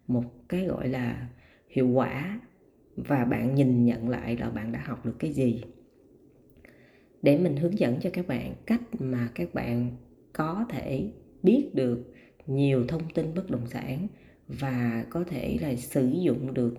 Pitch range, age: 120-170 Hz, 20-39